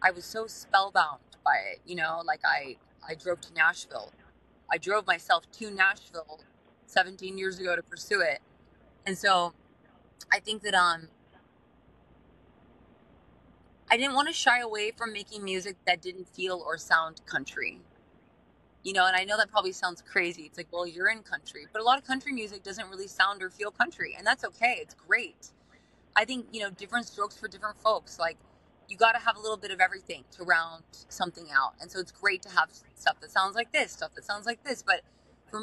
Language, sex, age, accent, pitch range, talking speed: English, female, 20-39, American, 175-220 Hz, 200 wpm